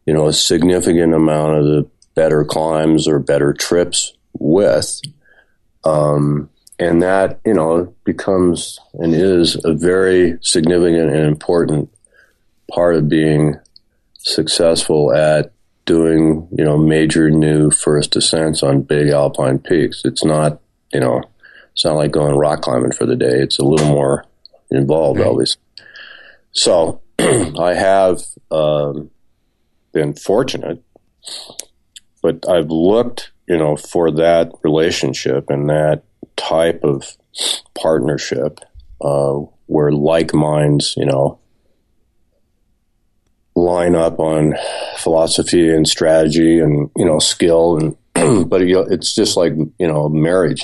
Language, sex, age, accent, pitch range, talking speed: English, male, 40-59, American, 75-85 Hz, 125 wpm